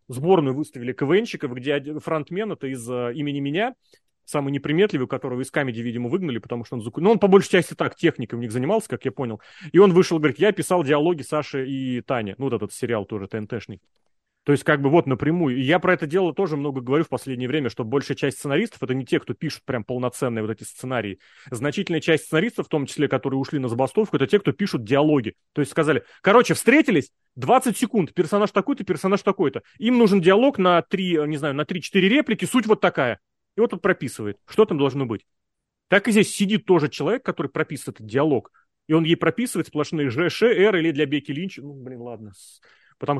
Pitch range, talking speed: 135-185 Hz, 205 wpm